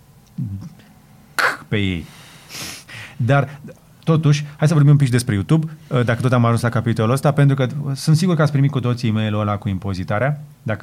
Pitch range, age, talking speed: 115-145 Hz, 30-49, 175 wpm